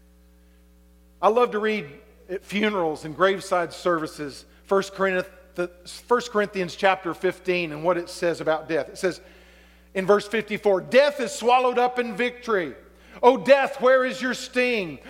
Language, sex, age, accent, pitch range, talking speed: English, male, 50-69, American, 180-260 Hz, 145 wpm